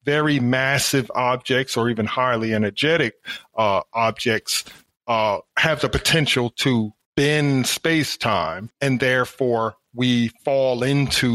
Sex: male